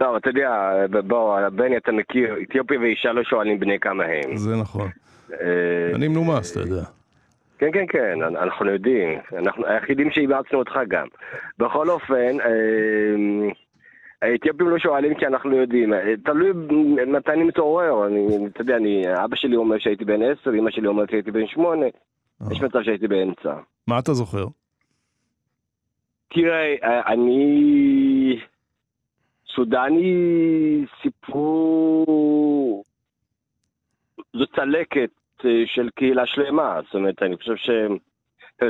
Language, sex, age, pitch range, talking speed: Hebrew, male, 40-59, 105-145 Hz, 120 wpm